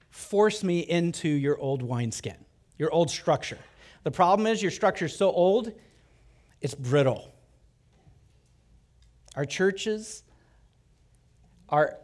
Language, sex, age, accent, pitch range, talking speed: English, male, 40-59, American, 125-160 Hz, 110 wpm